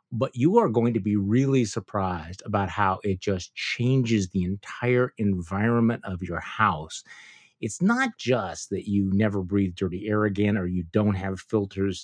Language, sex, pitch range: English, male, 100-135 Hz